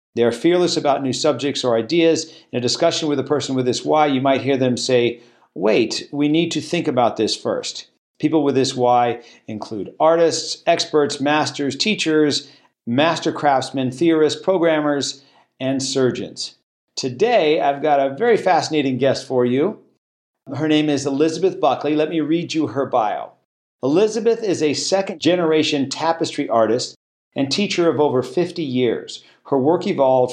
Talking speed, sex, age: 155 wpm, male, 50-69